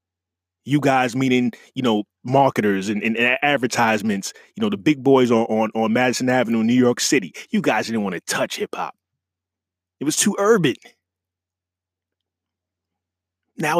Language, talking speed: English, 150 wpm